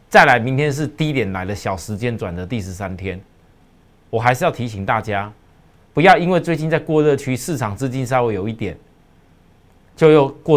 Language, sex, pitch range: Chinese, male, 95-155 Hz